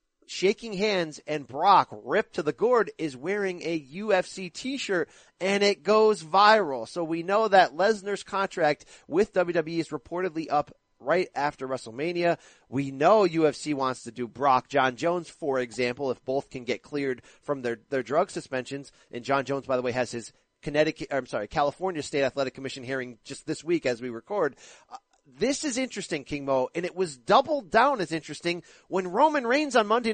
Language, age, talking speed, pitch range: English, 40-59, 180 wpm, 145-210 Hz